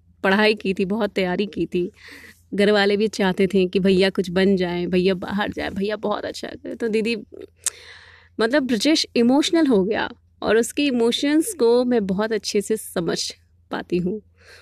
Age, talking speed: 20-39, 170 wpm